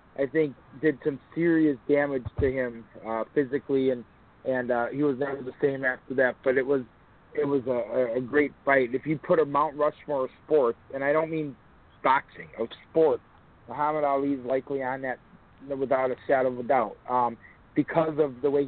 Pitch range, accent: 130-155 Hz, American